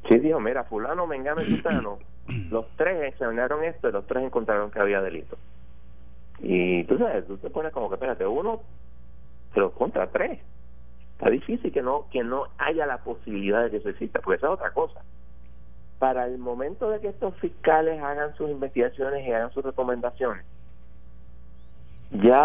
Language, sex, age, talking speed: Spanish, male, 30-49, 170 wpm